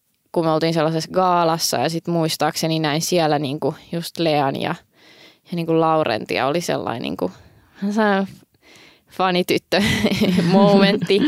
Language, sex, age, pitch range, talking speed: Finnish, female, 20-39, 160-195 Hz, 120 wpm